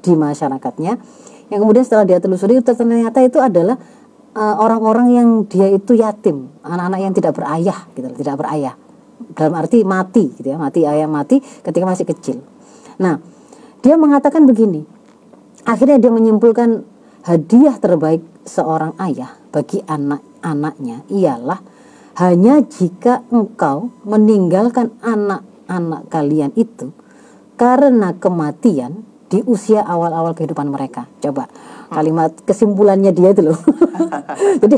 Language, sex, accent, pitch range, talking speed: Indonesian, female, native, 180-255 Hz, 120 wpm